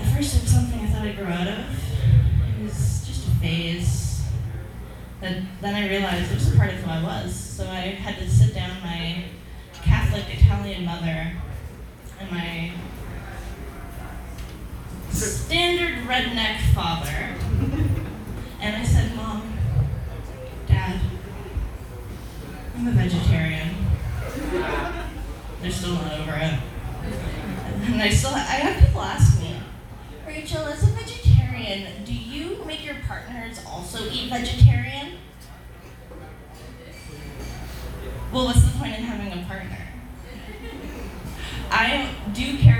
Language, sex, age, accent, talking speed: English, female, 10-29, American, 125 wpm